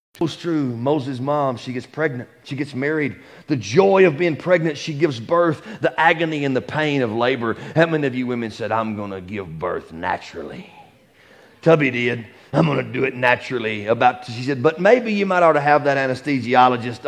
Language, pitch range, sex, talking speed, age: English, 130-170 Hz, male, 195 wpm, 40-59